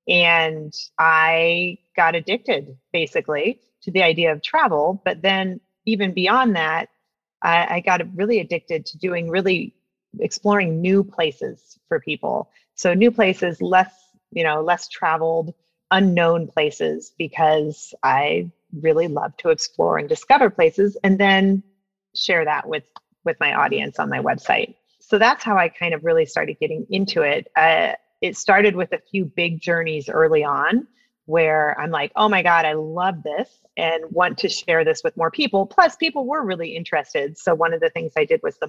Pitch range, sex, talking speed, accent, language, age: 160-215 Hz, female, 170 wpm, American, English, 30-49